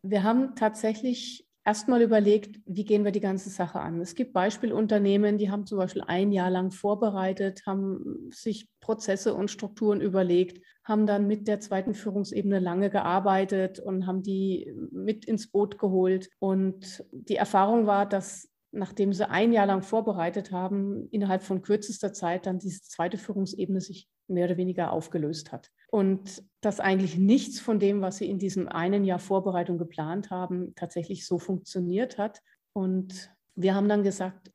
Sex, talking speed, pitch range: female, 165 wpm, 185-210 Hz